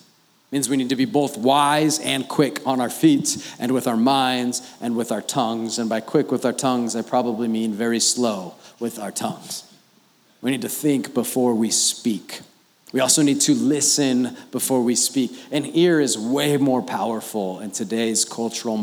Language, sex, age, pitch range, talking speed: English, male, 30-49, 115-145 Hz, 185 wpm